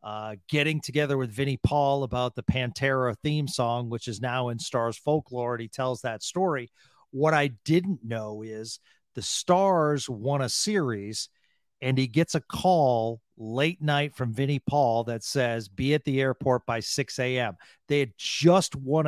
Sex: male